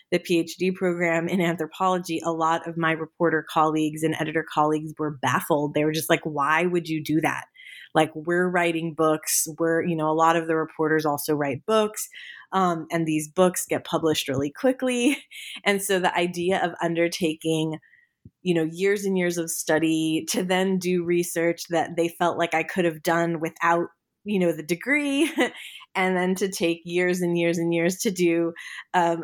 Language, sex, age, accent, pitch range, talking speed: English, female, 30-49, American, 160-185 Hz, 185 wpm